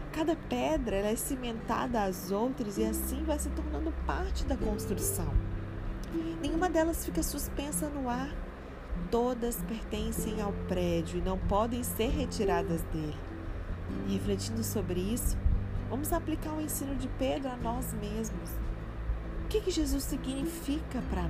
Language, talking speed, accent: Portuguese, 135 wpm, Brazilian